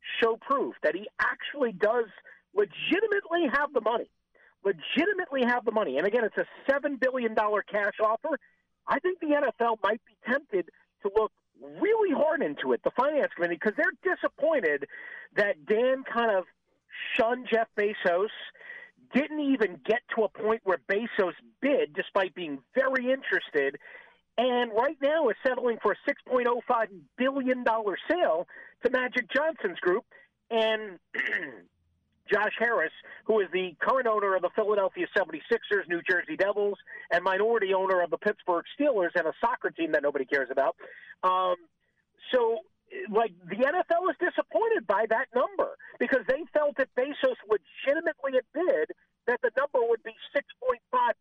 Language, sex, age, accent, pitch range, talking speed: English, male, 40-59, American, 210-310 Hz, 160 wpm